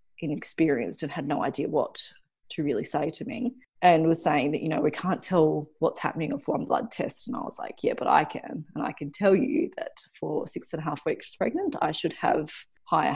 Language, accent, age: English, Australian, 20-39